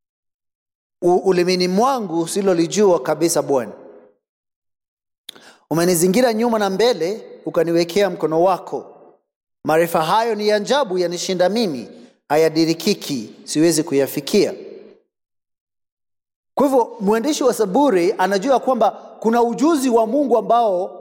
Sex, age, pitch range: male, 30-49, 175-240 Hz